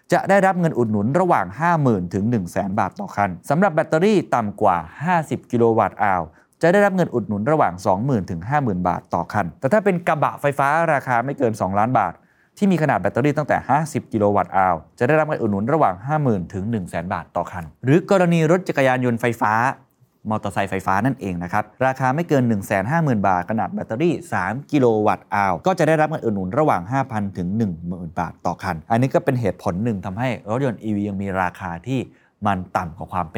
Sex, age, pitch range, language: male, 20-39, 100-150 Hz, Thai